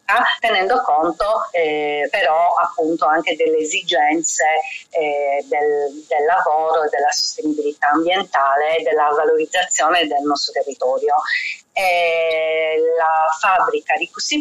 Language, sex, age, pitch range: Italian, female, 40-59, 150-250 Hz